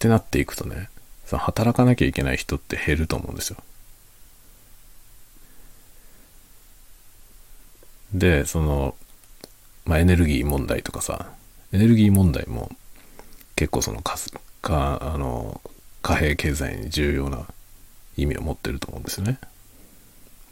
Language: Japanese